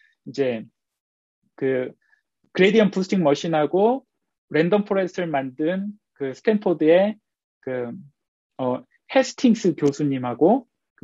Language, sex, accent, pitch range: Korean, male, native, 145-210 Hz